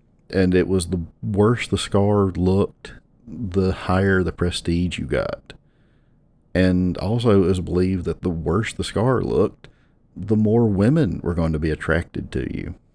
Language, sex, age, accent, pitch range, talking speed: English, male, 50-69, American, 85-100 Hz, 160 wpm